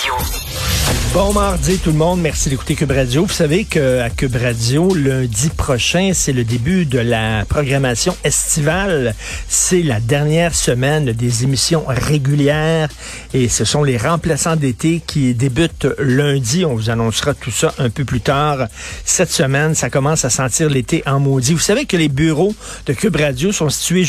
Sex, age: male, 50-69